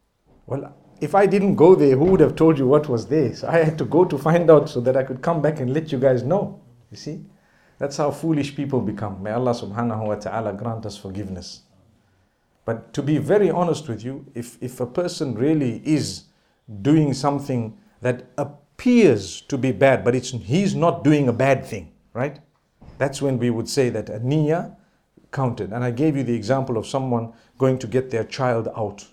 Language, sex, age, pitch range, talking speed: English, male, 50-69, 110-145 Hz, 205 wpm